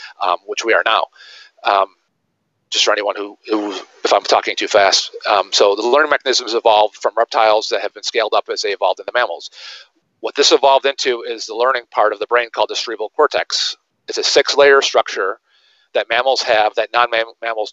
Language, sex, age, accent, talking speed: English, male, 40-59, American, 200 wpm